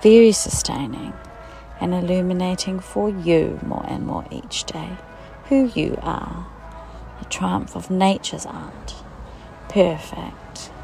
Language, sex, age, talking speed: English, female, 40-59, 110 wpm